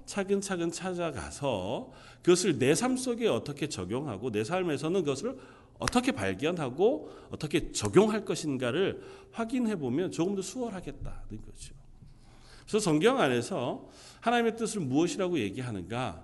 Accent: native